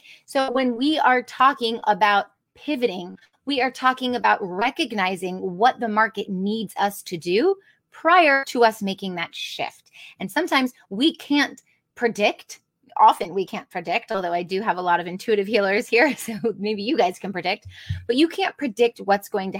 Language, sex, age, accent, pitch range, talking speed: English, female, 30-49, American, 195-260 Hz, 175 wpm